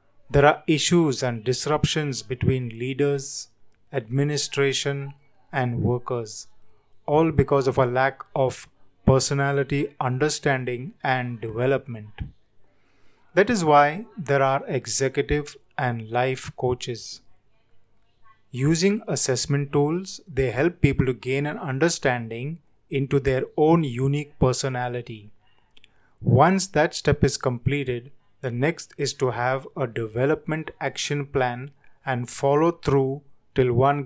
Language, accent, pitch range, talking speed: Hindi, native, 125-145 Hz, 110 wpm